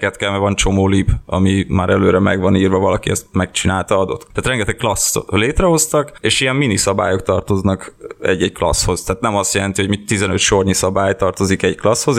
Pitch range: 100-115 Hz